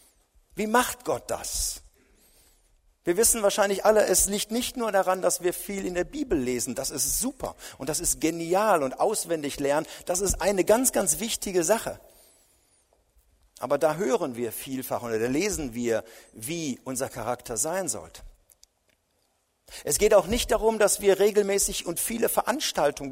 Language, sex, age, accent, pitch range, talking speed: German, male, 50-69, German, 155-210 Hz, 160 wpm